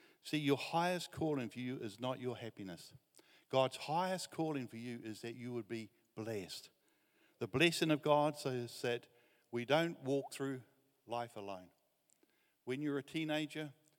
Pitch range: 115-145 Hz